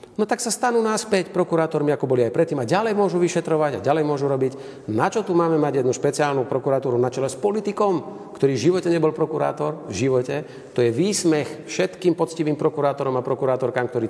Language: Slovak